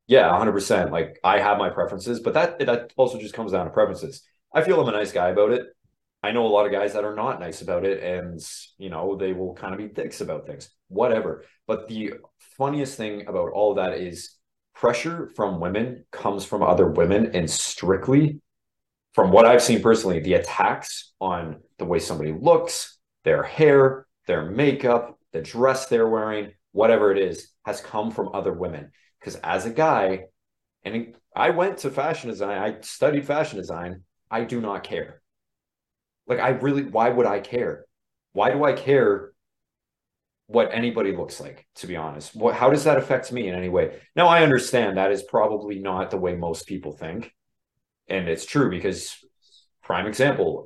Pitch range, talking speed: 95-130 Hz, 185 wpm